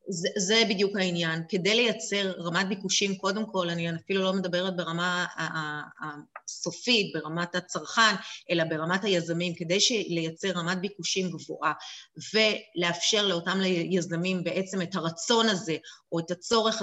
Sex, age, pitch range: female, 30-49, 170-205 Hz